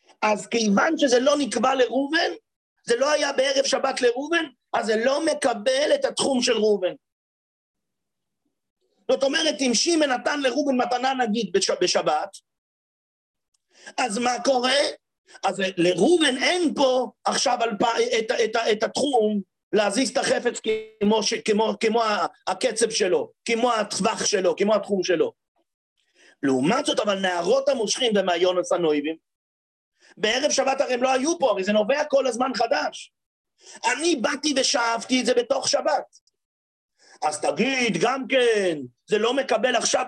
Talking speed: 135 wpm